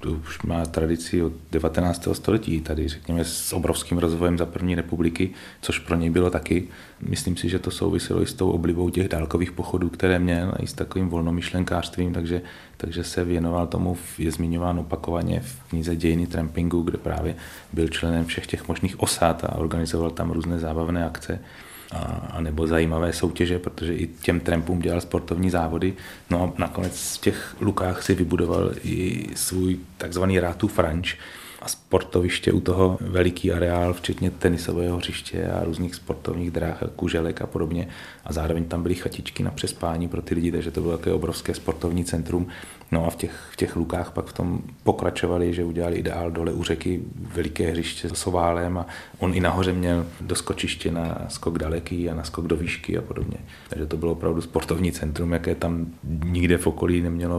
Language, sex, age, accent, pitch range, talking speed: Czech, male, 30-49, native, 85-90 Hz, 180 wpm